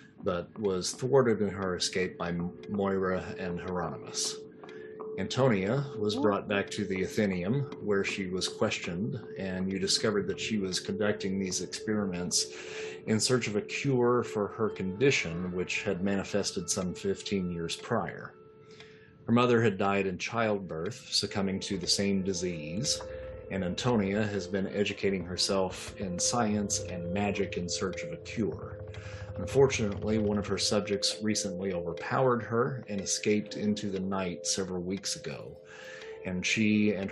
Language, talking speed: English, 145 wpm